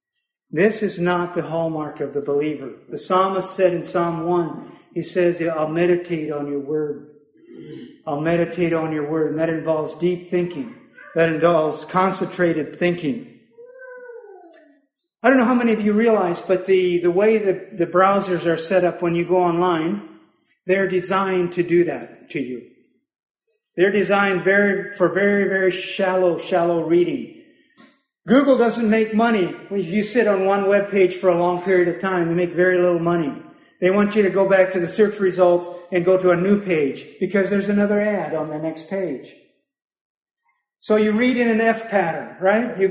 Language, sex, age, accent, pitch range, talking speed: English, male, 50-69, American, 175-210 Hz, 180 wpm